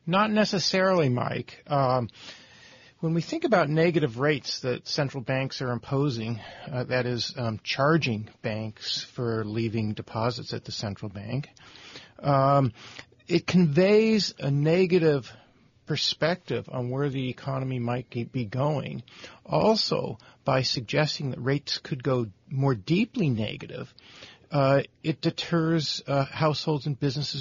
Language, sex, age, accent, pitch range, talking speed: English, male, 50-69, American, 125-160 Hz, 125 wpm